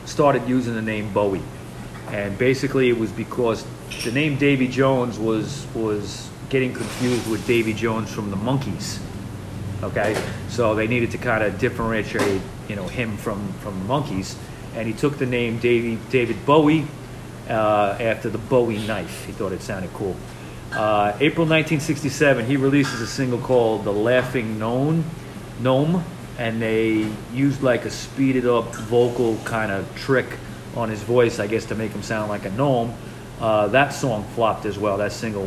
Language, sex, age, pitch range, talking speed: English, male, 40-59, 105-130 Hz, 165 wpm